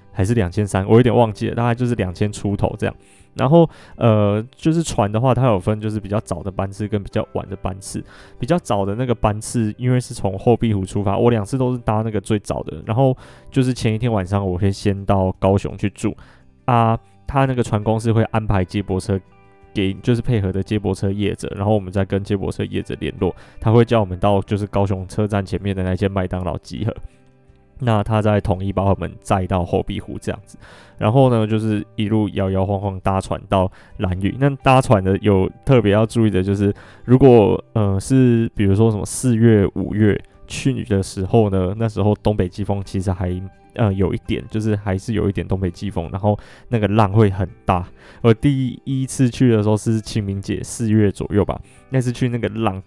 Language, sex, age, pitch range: Chinese, male, 20-39, 95-115 Hz